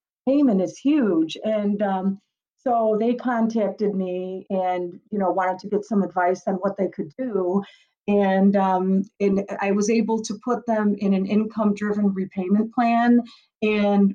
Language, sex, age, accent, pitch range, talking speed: English, female, 50-69, American, 185-215 Hz, 155 wpm